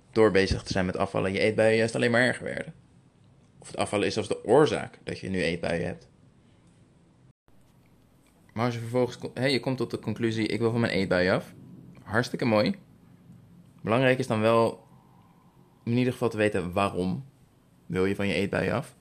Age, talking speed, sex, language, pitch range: 20-39, 185 wpm, male, Dutch, 95-120 Hz